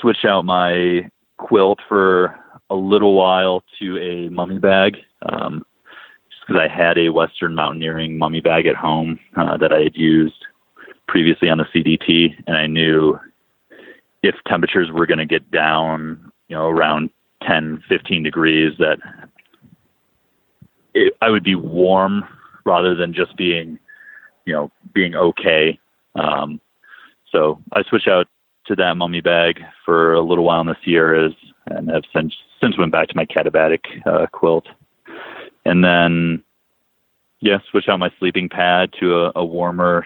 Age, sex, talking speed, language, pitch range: 30-49, male, 150 wpm, English, 80-95 Hz